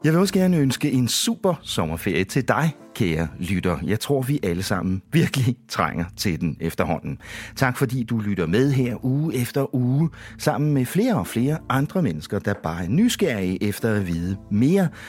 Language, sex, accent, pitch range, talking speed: English, male, Danish, 95-135 Hz, 185 wpm